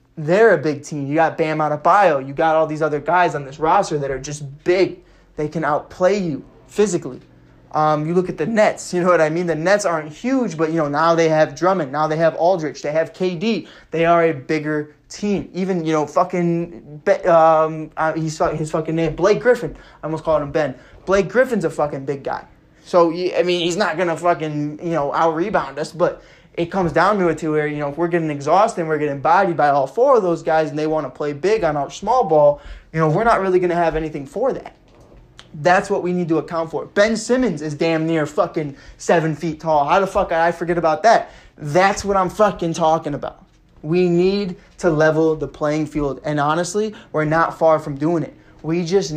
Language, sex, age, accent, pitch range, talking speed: English, male, 20-39, American, 150-180 Hz, 225 wpm